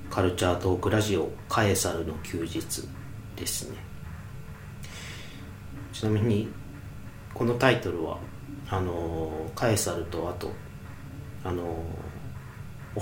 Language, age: Japanese, 40-59